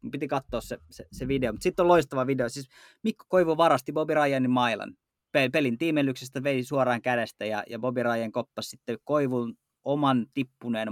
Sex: male